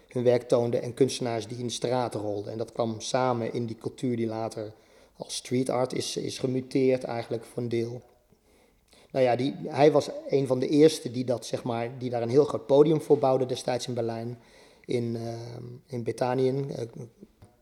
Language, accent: Dutch, Dutch